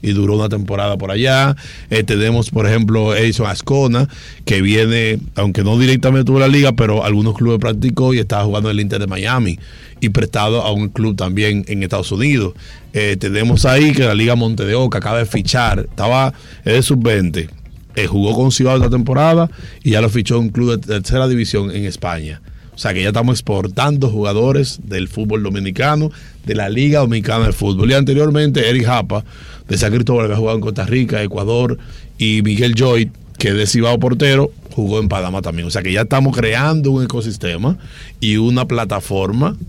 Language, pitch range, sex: Spanish, 105-130 Hz, male